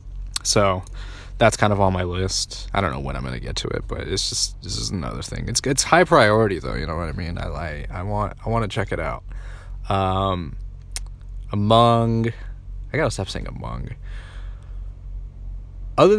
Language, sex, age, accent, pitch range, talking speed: English, male, 20-39, American, 95-110 Hz, 190 wpm